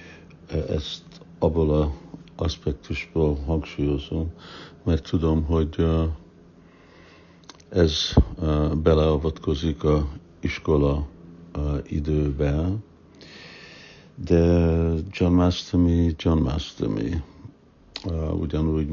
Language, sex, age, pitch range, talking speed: Hungarian, male, 60-79, 75-85 Hz, 60 wpm